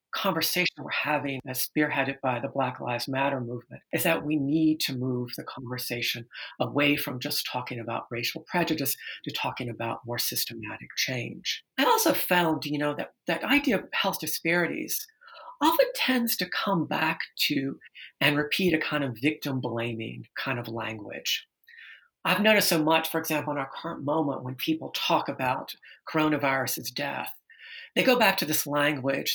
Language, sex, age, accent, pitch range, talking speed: English, female, 50-69, American, 130-165 Hz, 165 wpm